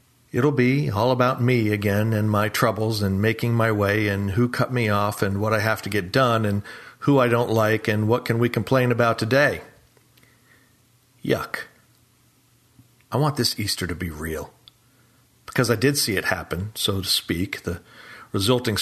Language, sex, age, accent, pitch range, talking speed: English, male, 40-59, American, 100-120 Hz, 180 wpm